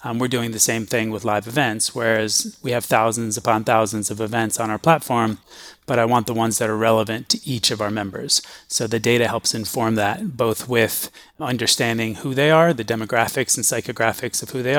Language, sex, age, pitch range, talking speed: English, male, 30-49, 110-125 Hz, 210 wpm